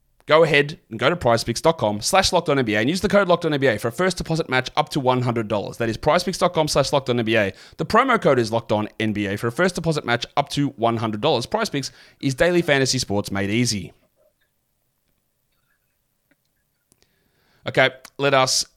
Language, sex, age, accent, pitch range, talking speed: English, male, 30-49, Australian, 105-145 Hz, 175 wpm